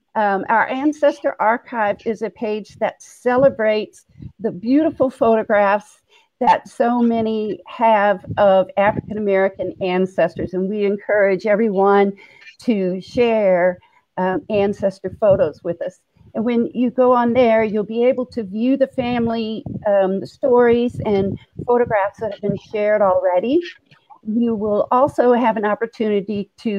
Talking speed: 130 wpm